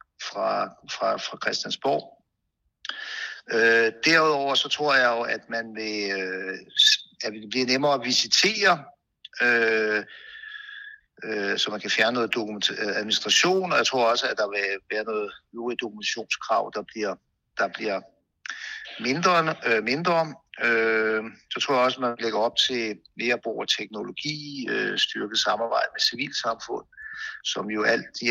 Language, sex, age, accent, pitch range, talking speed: Danish, male, 60-79, native, 115-185 Hz, 145 wpm